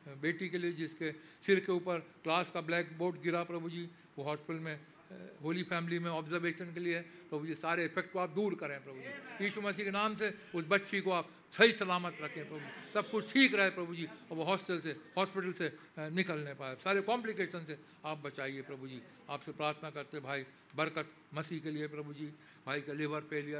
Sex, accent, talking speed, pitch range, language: male, Indian, 135 wpm, 150-195 Hz, English